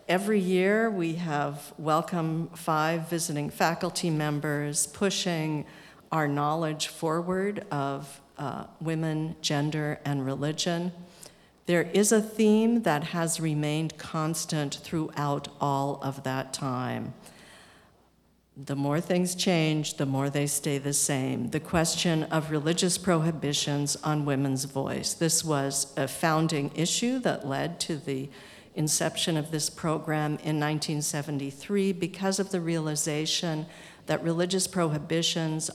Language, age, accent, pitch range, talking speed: English, 50-69, American, 145-170 Hz, 120 wpm